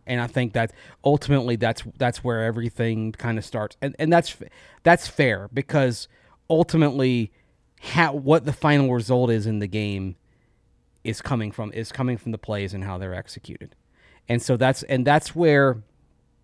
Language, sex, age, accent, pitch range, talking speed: English, male, 30-49, American, 110-135 Hz, 170 wpm